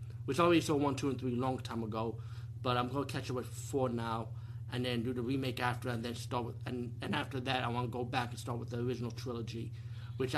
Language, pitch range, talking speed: English, 115-140 Hz, 270 wpm